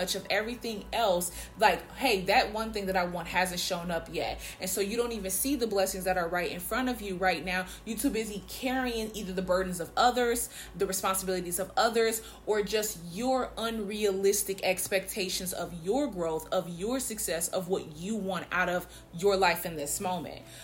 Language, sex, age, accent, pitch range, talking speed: English, female, 20-39, American, 180-220 Hz, 195 wpm